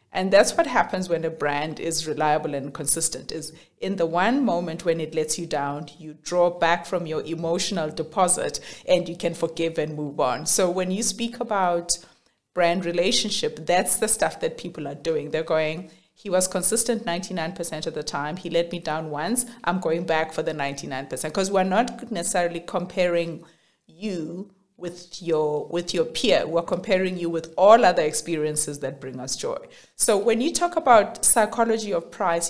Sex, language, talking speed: female, English, 185 wpm